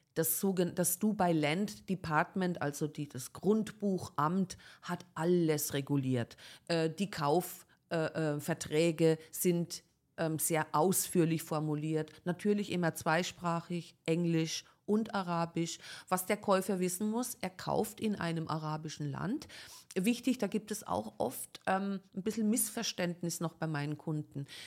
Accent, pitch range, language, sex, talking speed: German, 155-190 Hz, German, female, 125 wpm